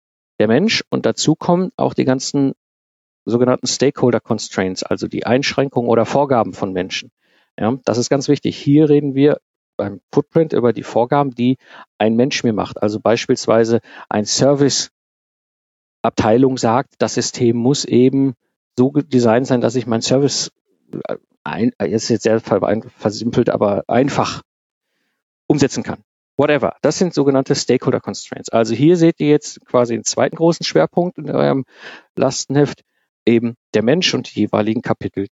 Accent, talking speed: German, 150 wpm